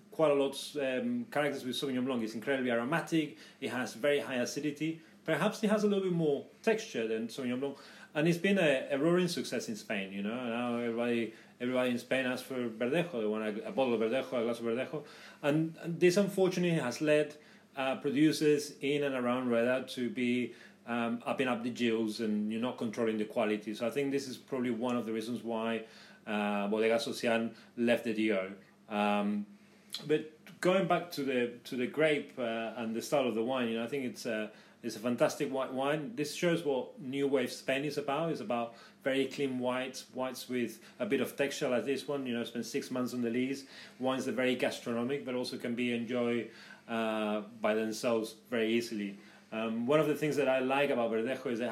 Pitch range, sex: 115-145 Hz, male